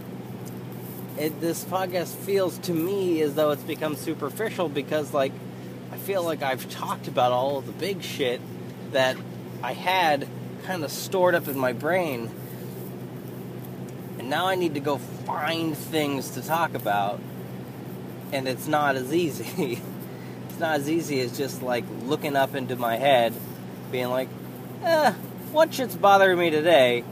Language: English